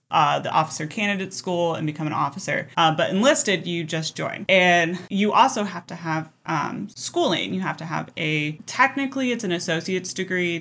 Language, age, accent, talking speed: English, 20-39, American, 185 wpm